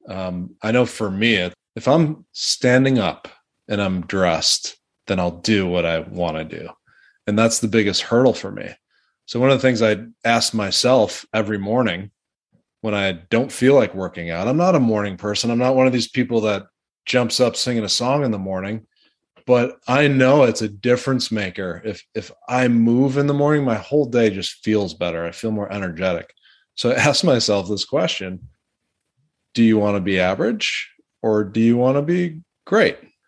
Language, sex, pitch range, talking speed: English, male, 100-135 Hz, 195 wpm